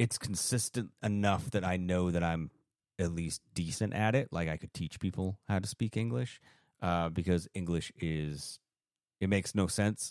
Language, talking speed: English, 180 wpm